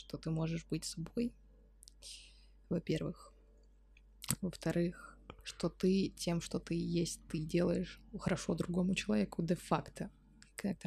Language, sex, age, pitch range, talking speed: Russian, female, 20-39, 165-190 Hz, 110 wpm